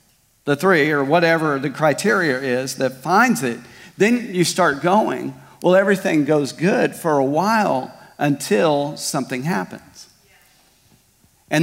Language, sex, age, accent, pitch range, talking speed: English, male, 40-59, American, 135-165 Hz, 130 wpm